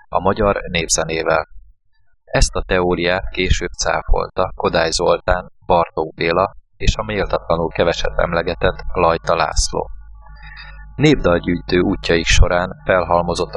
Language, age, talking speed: Hungarian, 20-39, 100 wpm